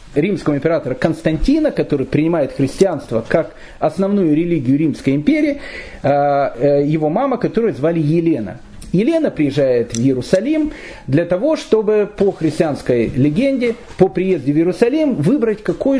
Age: 40-59